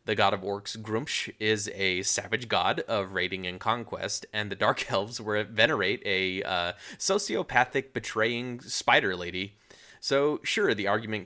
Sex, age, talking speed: male, 30-49, 150 wpm